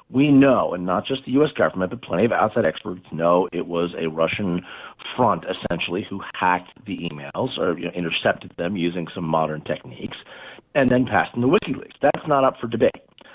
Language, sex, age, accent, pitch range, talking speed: English, male, 40-59, American, 90-135 Hz, 190 wpm